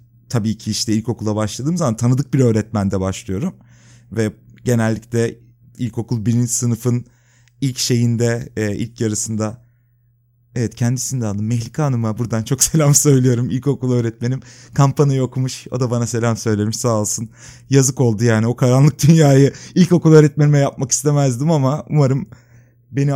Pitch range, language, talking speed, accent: 120-145 Hz, Turkish, 140 wpm, native